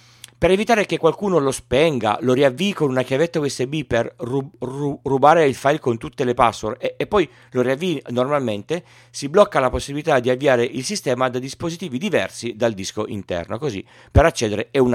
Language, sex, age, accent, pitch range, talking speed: Italian, male, 40-59, native, 120-160 Hz, 180 wpm